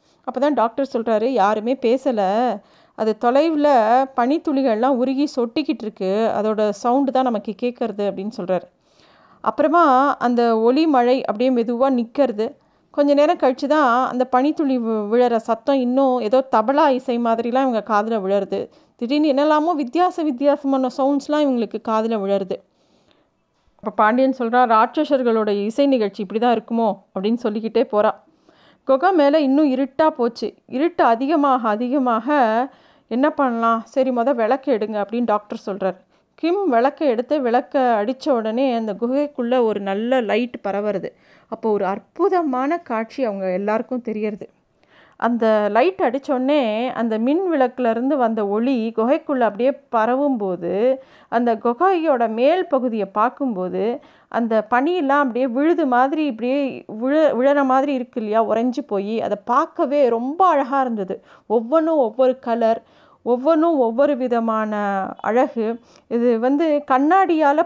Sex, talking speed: female, 125 wpm